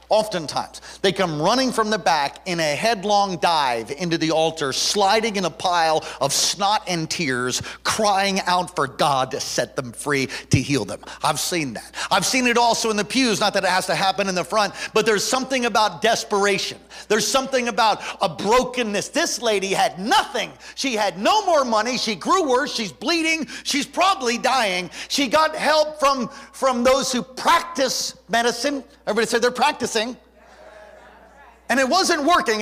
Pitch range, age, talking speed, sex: 210-295 Hz, 50-69, 175 wpm, male